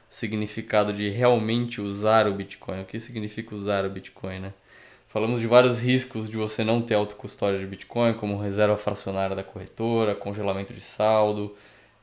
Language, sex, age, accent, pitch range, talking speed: Portuguese, male, 20-39, Brazilian, 100-115 Hz, 160 wpm